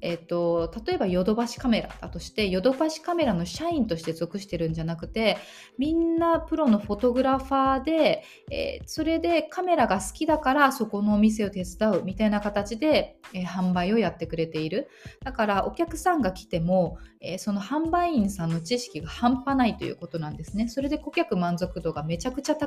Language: Japanese